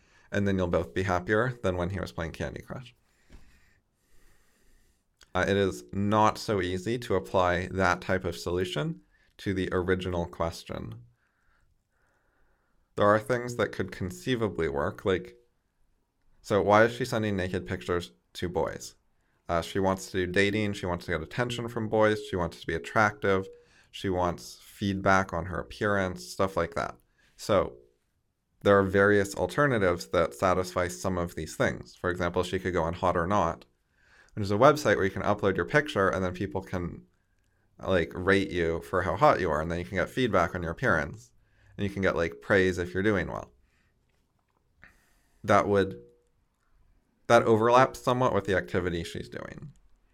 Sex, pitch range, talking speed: male, 85-105 Hz, 170 wpm